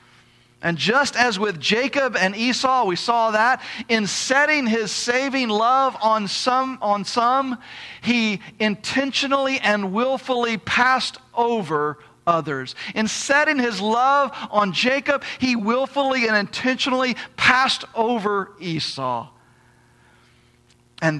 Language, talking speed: English, 115 wpm